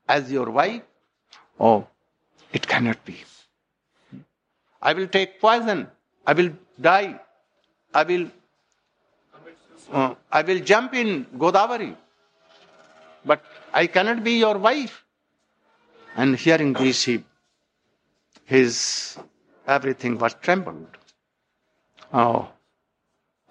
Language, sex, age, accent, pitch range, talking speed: English, male, 60-79, Indian, 120-195 Hz, 90 wpm